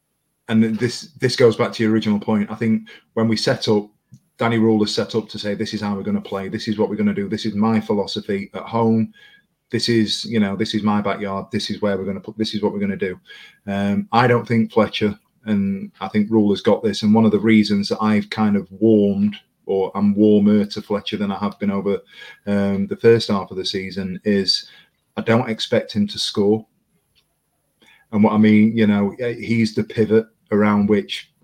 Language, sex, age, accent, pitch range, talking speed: English, male, 30-49, British, 105-110 Hz, 230 wpm